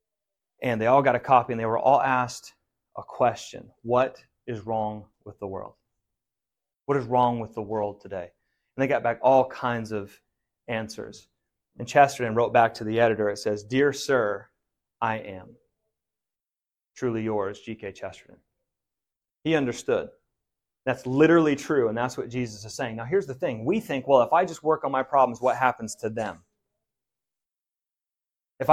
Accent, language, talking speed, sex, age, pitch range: American, English, 170 wpm, male, 30-49, 120-170 Hz